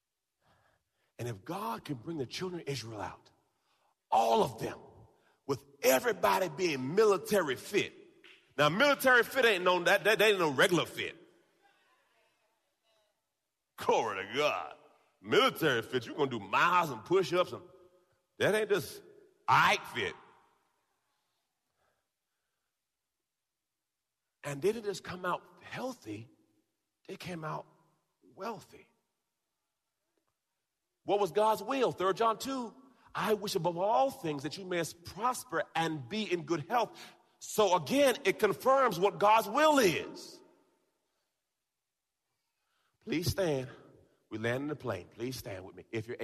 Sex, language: male, English